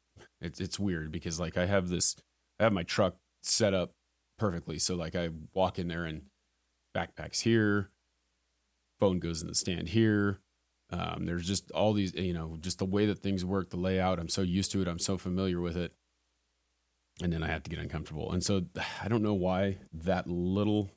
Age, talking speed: 30-49, 195 wpm